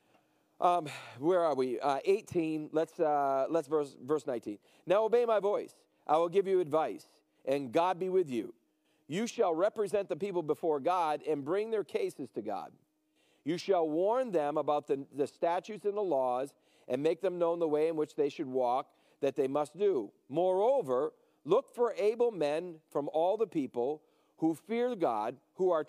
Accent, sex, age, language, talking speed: American, male, 40-59, English, 185 wpm